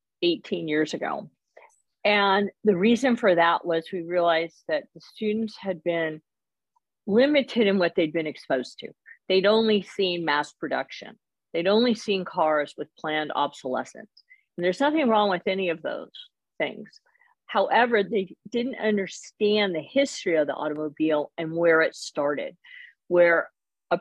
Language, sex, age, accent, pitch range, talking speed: English, female, 50-69, American, 155-210 Hz, 145 wpm